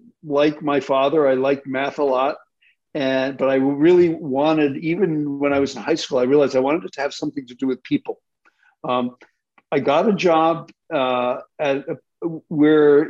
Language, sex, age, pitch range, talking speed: English, male, 50-69, 130-160 Hz, 190 wpm